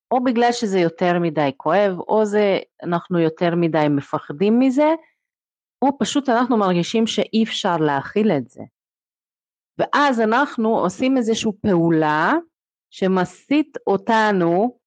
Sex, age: female, 30-49